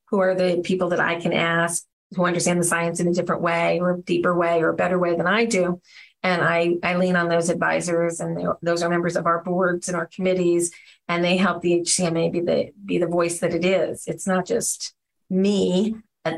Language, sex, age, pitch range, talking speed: English, female, 40-59, 175-195 Hz, 230 wpm